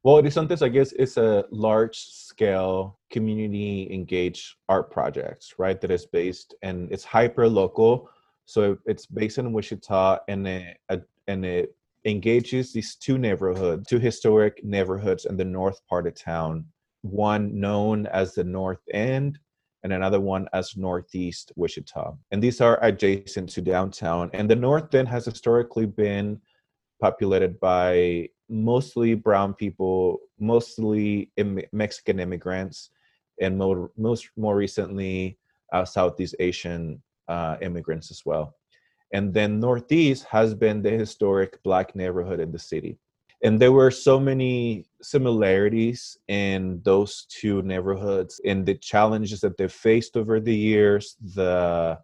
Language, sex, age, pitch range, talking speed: English, male, 30-49, 95-115 Hz, 135 wpm